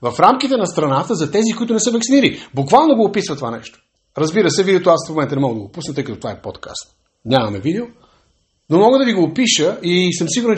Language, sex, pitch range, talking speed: Bulgarian, male, 165-235 Hz, 240 wpm